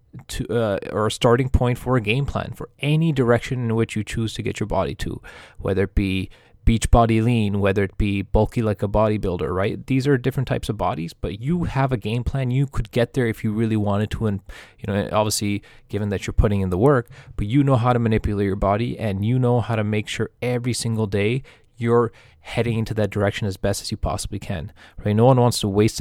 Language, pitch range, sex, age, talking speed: English, 105-125 Hz, male, 20-39, 235 wpm